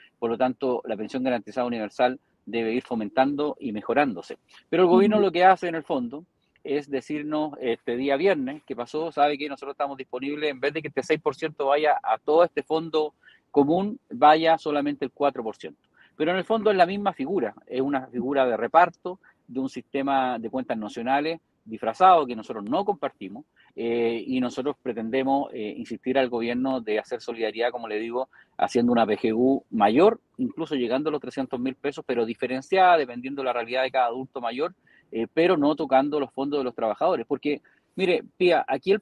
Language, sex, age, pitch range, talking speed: Spanish, male, 40-59, 125-160 Hz, 185 wpm